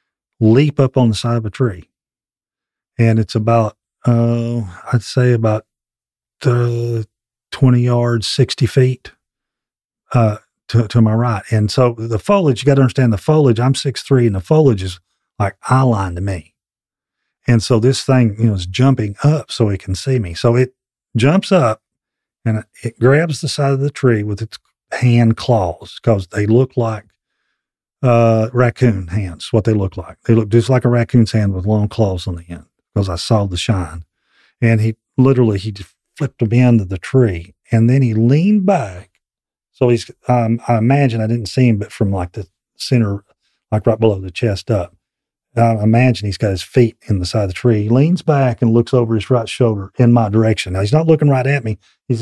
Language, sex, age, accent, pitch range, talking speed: English, male, 40-59, American, 105-125 Hz, 200 wpm